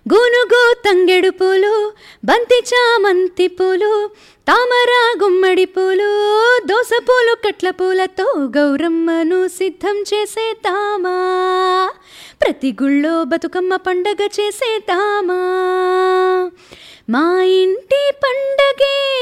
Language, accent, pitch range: Telugu, native, 360-425 Hz